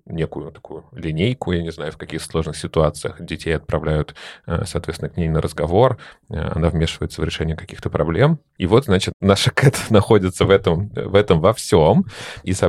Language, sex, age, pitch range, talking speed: Russian, male, 30-49, 80-100 Hz, 175 wpm